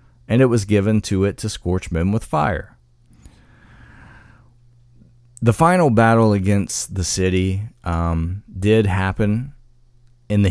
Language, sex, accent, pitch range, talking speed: English, male, American, 85-115 Hz, 125 wpm